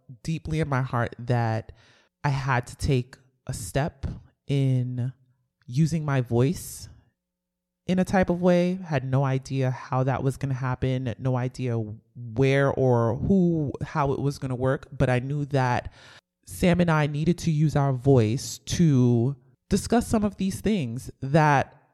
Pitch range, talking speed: 125-155 Hz, 160 wpm